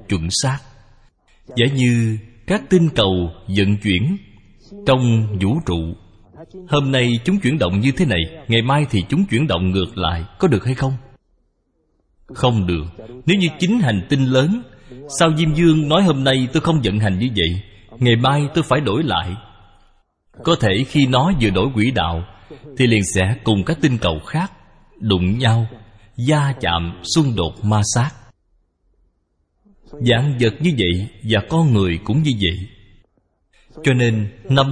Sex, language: male, Vietnamese